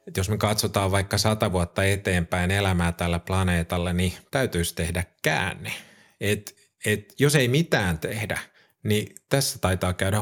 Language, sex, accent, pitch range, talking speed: Finnish, male, native, 90-110 Hz, 145 wpm